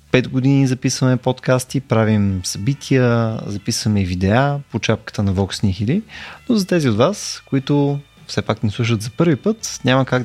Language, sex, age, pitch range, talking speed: Bulgarian, male, 30-49, 110-140 Hz, 165 wpm